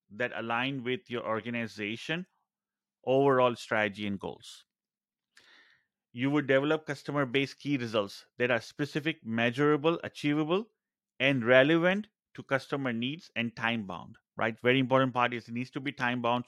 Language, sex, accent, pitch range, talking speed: English, male, Indian, 120-145 Hz, 135 wpm